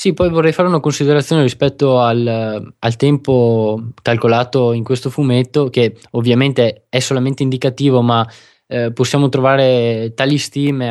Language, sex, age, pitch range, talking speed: Italian, male, 20-39, 125-150 Hz, 140 wpm